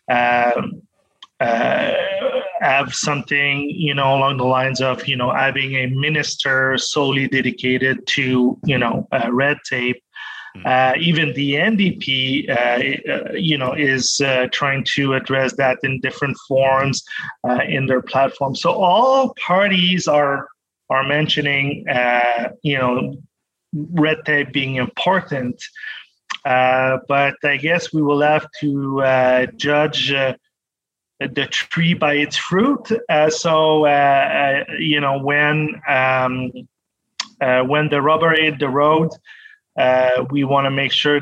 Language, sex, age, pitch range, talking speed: English, male, 30-49, 130-160 Hz, 140 wpm